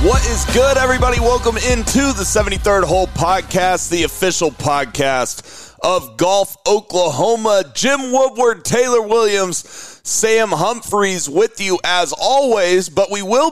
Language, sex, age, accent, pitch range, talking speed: English, male, 30-49, American, 155-205 Hz, 130 wpm